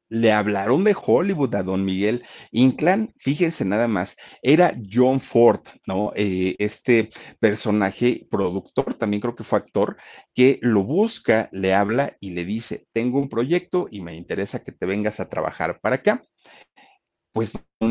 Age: 50-69